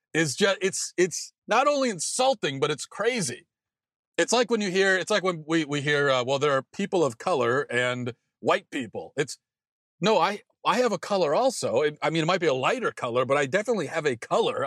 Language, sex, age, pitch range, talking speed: English, male, 40-59, 135-175 Hz, 220 wpm